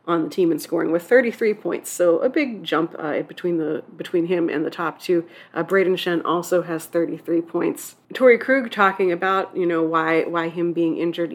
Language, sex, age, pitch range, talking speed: English, female, 30-49, 170-235 Hz, 205 wpm